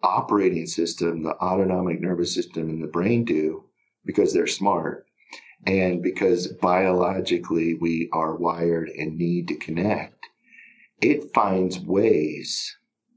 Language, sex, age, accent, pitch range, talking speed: English, male, 50-69, American, 90-115 Hz, 120 wpm